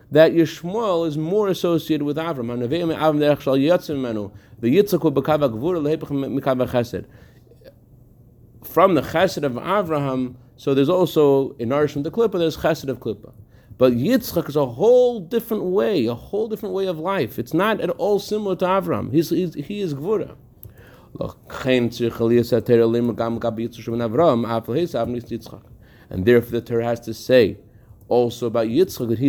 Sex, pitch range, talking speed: male, 120-175 Hz, 125 wpm